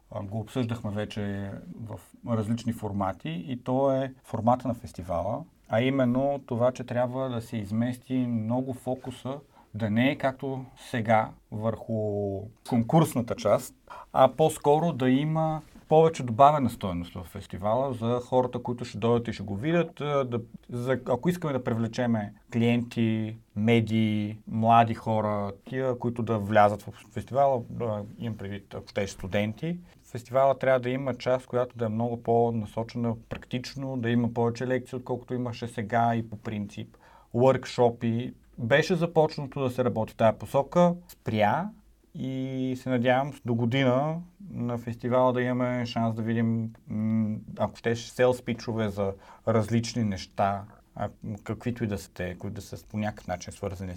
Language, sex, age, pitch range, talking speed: Bulgarian, male, 40-59, 110-130 Hz, 145 wpm